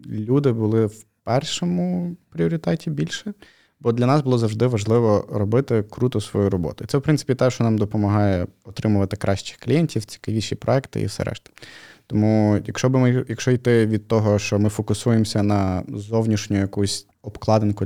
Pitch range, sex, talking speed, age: 100-125 Hz, male, 160 wpm, 20-39